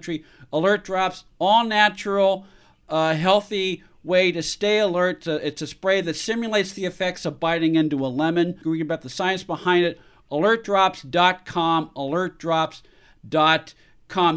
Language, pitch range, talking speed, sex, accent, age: English, 160-195 Hz, 135 wpm, male, American, 50-69